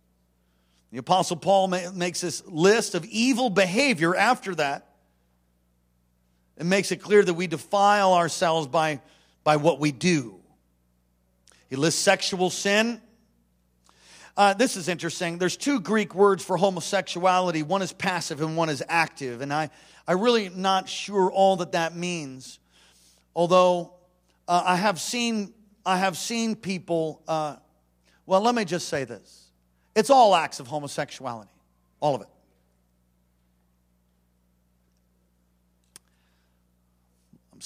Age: 50-69